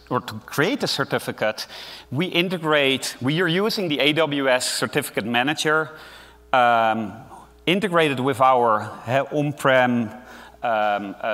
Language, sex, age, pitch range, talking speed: English, male, 30-49, 115-155 Hz, 110 wpm